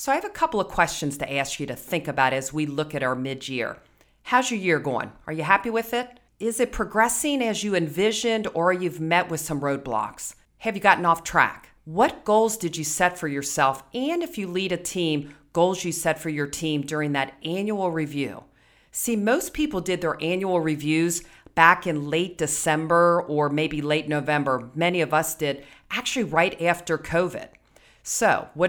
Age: 40-59